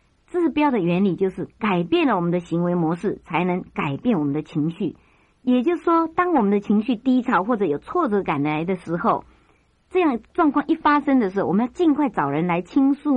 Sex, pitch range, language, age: male, 185-265 Hz, Chinese, 50-69